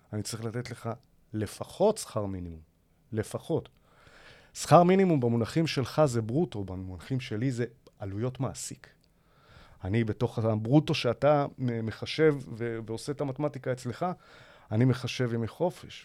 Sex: male